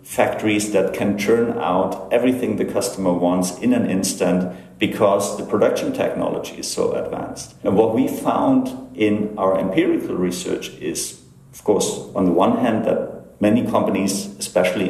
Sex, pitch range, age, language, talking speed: male, 95-130 Hz, 50-69, English, 155 wpm